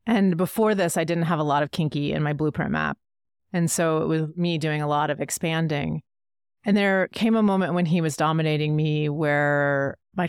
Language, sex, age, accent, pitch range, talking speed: English, female, 30-49, American, 150-185 Hz, 210 wpm